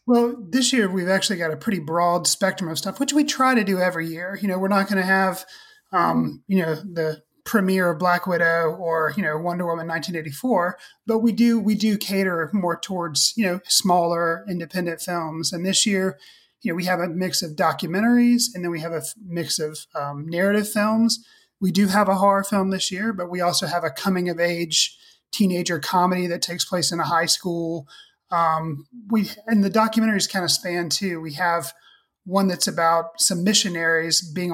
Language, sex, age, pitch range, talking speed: English, male, 30-49, 165-210 Hz, 200 wpm